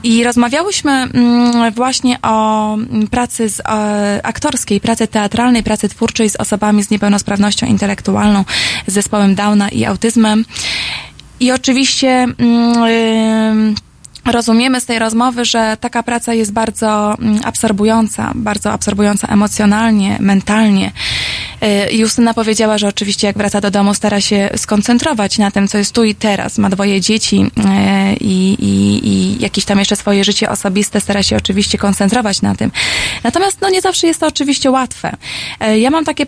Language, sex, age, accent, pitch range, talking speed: Polish, female, 20-39, native, 200-240 Hz, 145 wpm